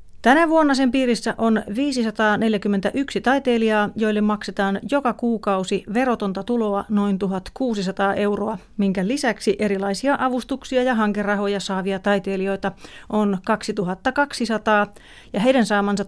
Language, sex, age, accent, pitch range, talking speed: Finnish, female, 30-49, native, 200-230 Hz, 110 wpm